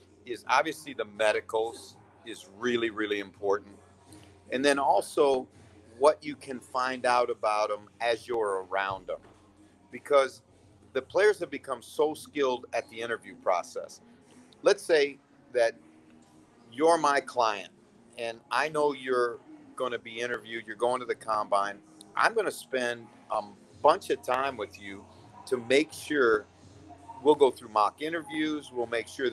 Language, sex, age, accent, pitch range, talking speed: English, male, 50-69, American, 105-150 Hz, 150 wpm